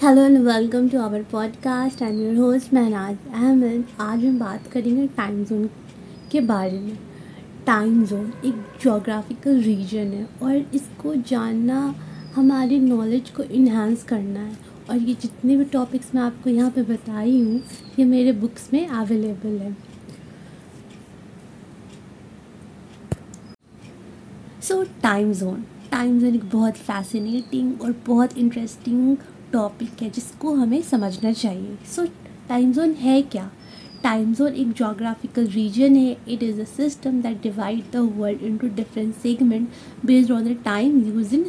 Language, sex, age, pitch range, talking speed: Hindi, female, 20-39, 220-260 Hz, 140 wpm